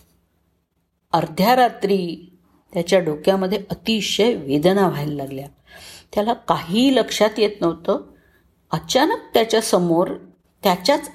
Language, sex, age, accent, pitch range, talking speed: Marathi, female, 50-69, native, 155-215 Hz, 85 wpm